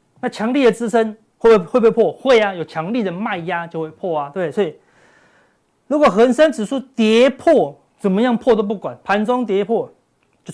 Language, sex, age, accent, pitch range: Chinese, male, 30-49, native, 150-220 Hz